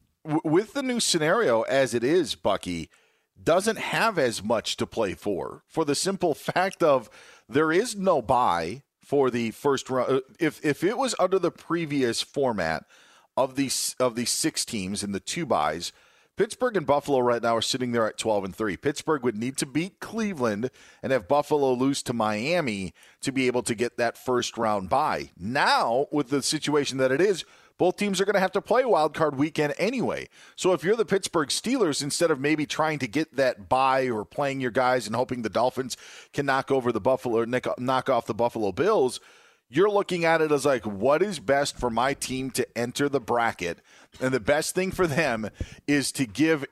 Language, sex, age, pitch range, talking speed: English, male, 40-59, 125-160 Hz, 200 wpm